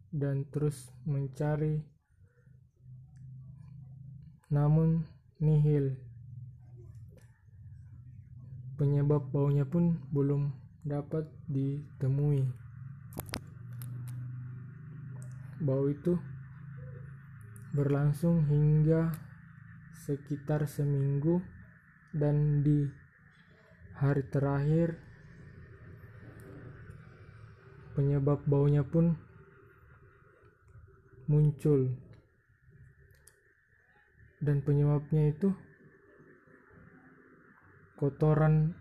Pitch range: 130-155 Hz